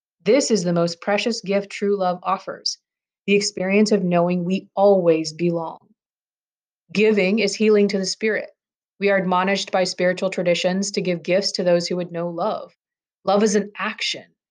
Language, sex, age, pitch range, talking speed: English, female, 30-49, 180-220 Hz, 170 wpm